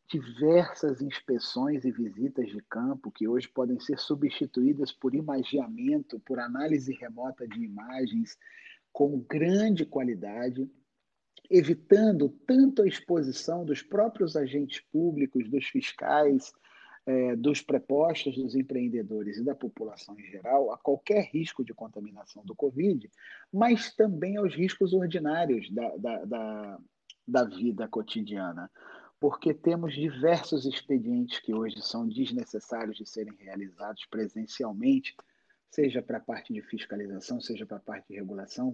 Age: 40-59